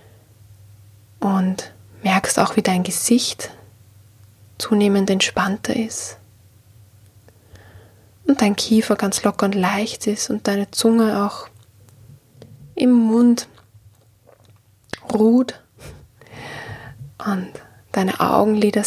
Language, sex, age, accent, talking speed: German, female, 20-39, German, 85 wpm